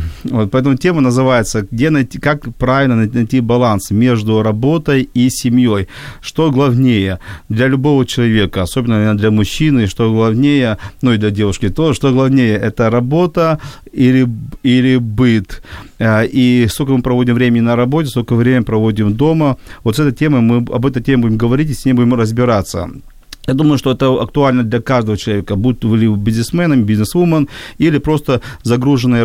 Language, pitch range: Ukrainian, 110-135 Hz